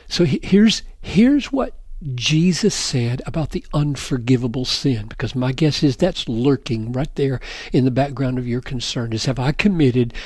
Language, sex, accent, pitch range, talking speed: English, male, American, 120-160 Hz, 165 wpm